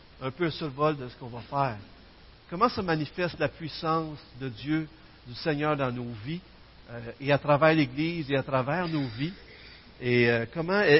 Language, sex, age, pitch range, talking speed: French, male, 60-79, 130-170 Hz, 175 wpm